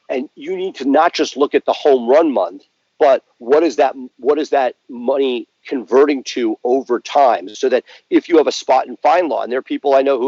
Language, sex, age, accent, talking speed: English, male, 40-59, American, 240 wpm